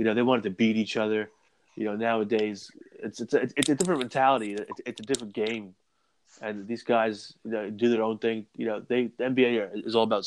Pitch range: 105-125 Hz